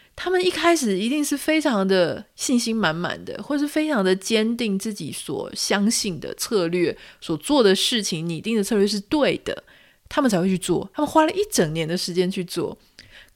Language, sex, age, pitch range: Chinese, female, 30-49, 180-250 Hz